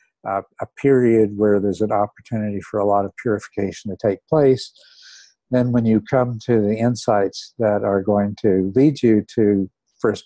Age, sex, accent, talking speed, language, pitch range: 60-79, male, American, 170 wpm, English, 105-130 Hz